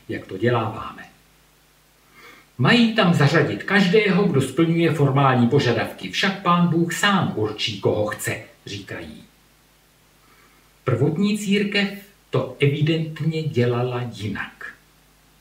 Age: 50-69